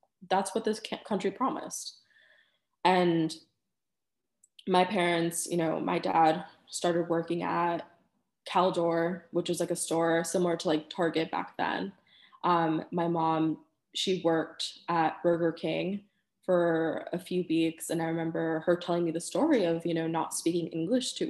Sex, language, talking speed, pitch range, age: female, English, 150 wpm, 165-185 Hz, 20-39